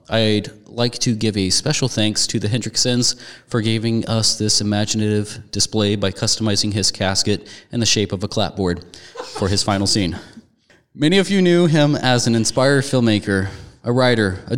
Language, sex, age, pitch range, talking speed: English, male, 30-49, 105-140 Hz, 175 wpm